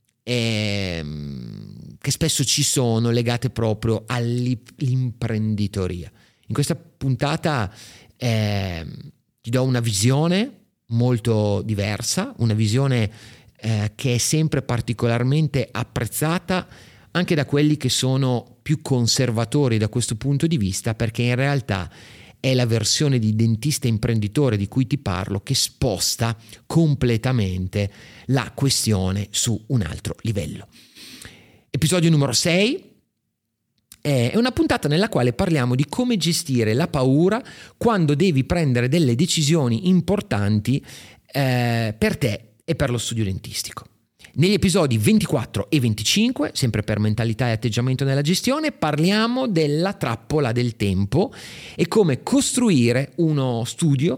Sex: male